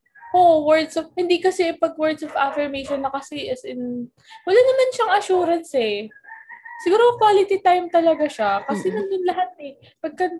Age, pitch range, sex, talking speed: 20-39, 235-350 Hz, female, 160 wpm